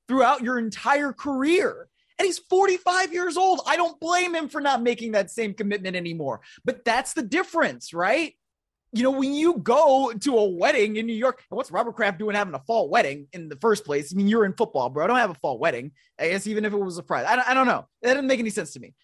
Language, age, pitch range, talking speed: English, 20-39, 210-300 Hz, 250 wpm